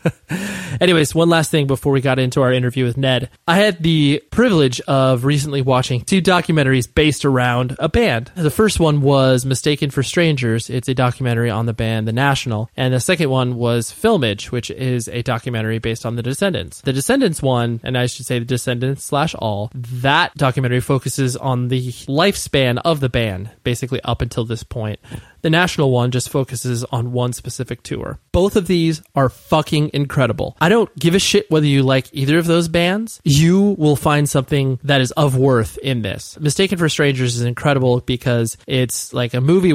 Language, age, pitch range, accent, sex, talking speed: English, 20-39, 125-160 Hz, American, male, 190 wpm